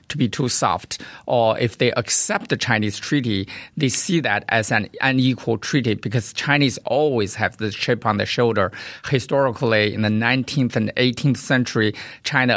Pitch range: 110-130 Hz